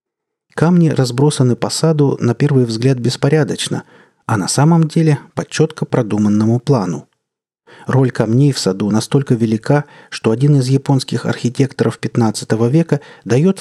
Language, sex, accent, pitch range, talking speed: Russian, male, native, 115-155 Hz, 130 wpm